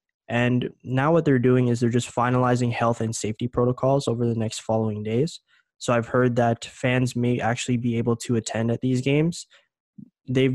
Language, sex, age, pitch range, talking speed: English, male, 20-39, 115-130 Hz, 190 wpm